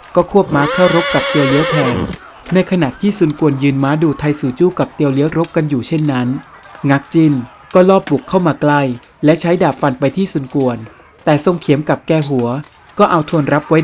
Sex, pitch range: male, 135-170 Hz